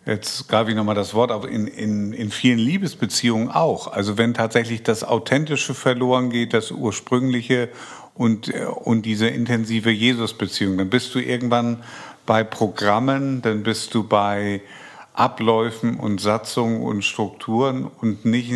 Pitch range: 115-125 Hz